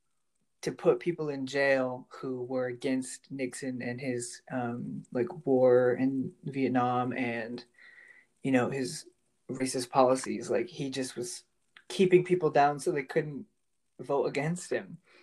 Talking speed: 140 wpm